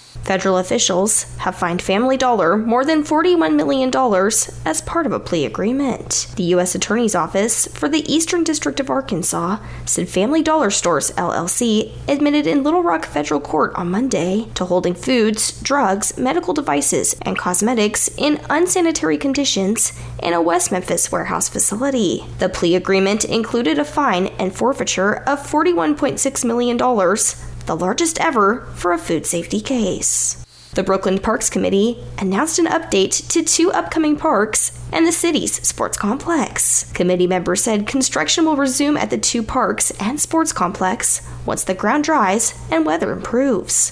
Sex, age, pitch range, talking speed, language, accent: female, 10-29, 185-295 Hz, 150 wpm, English, American